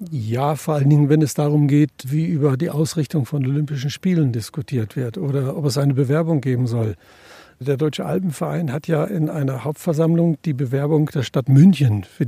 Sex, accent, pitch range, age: male, German, 135-155 Hz, 60-79